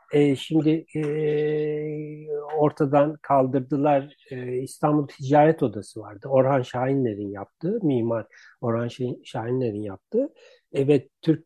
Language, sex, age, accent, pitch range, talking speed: Turkish, male, 60-79, native, 140-180 Hz, 105 wpm